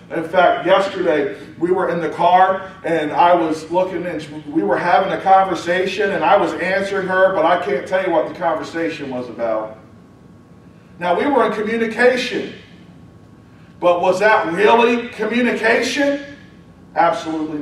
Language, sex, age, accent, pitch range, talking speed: English, male, 40-59, American, 160-200 Hz, 150 wpm